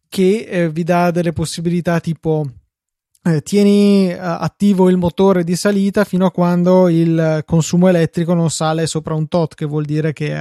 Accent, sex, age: native, male, 20-39